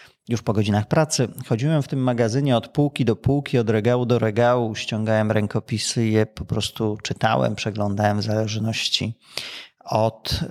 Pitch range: 110-130 Hz